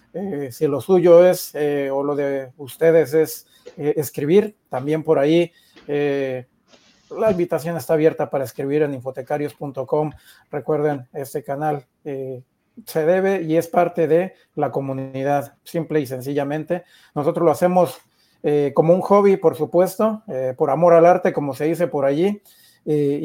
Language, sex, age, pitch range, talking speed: Spanish, male, 40-59, 145-175 Hz, 155 wpm